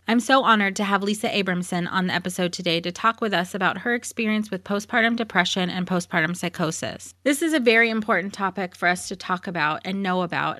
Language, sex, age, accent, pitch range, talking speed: English, female, 30-49, American, 175-220 Hz, 215 wpm